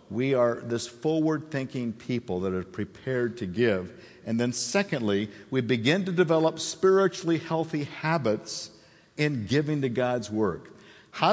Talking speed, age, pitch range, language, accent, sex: 140 wpm, 50-69, 115-165 Hz, English, American, male